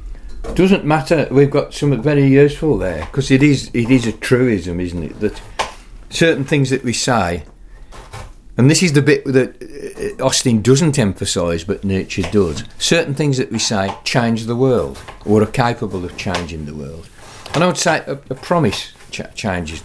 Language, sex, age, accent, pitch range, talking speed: English, male, 50-69, British, 100-135 Hz, 180 wpm